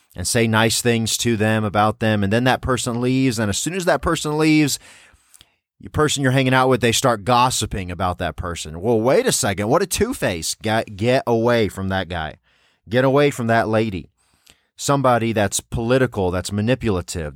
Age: 30-49